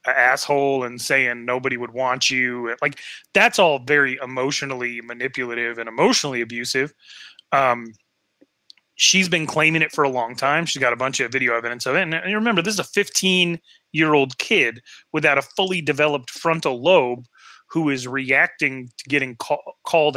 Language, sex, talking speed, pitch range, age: English, male, 170 wpm, 125-160 Hz, 30-49